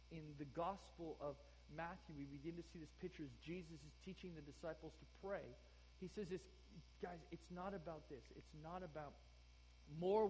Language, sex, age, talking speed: English, male, 40-59, 180 wpm